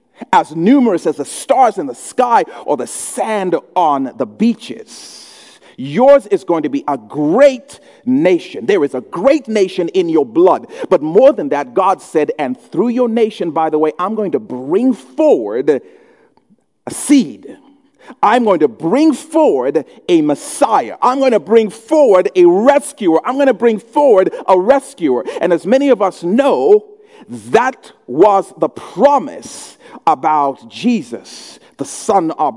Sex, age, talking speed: male, 40-59, 160 wpm